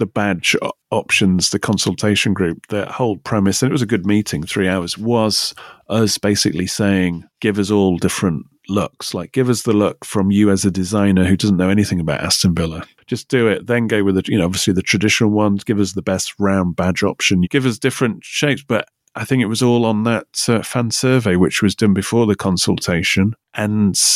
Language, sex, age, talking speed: English, male, 30-49, 210 wpm